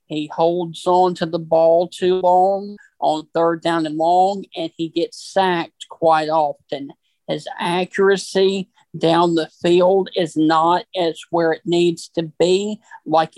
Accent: American